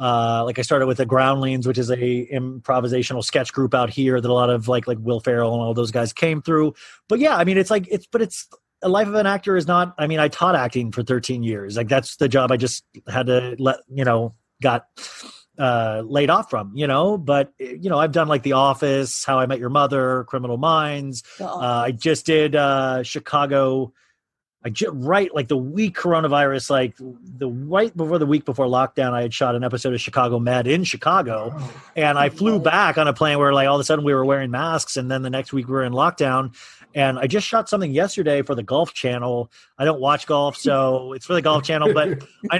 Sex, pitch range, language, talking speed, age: male, 125-155 Hz, English, 230 wpm, 30-49